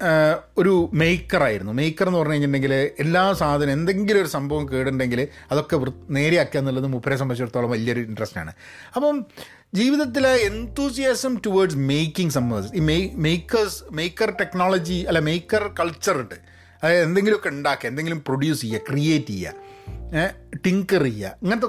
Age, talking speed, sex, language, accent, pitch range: 30-49, 125 wpm, male, Malayalam, native, 130-180 Hz